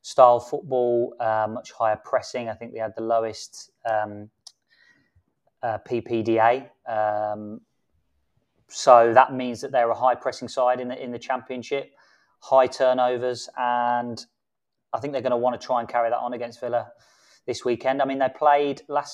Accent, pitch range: British, 115-125 Hz